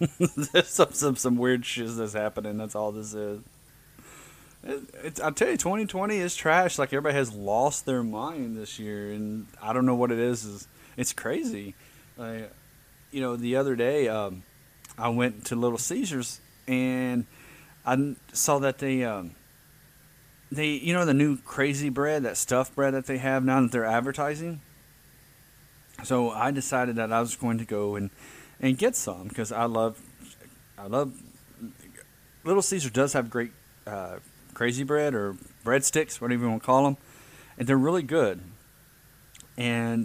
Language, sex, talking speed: English, male, 165 wpm